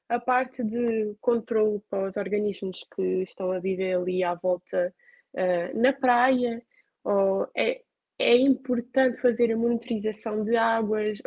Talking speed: 135 wpm